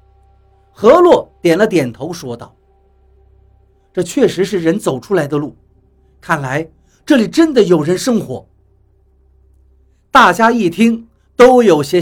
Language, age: Chinese, 50-69